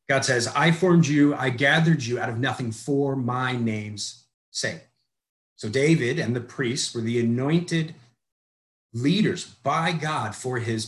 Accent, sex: American, male